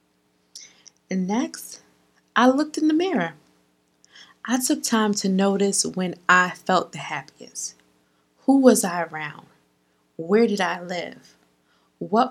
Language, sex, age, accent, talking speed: English, female, 20-39, American, 125 wpm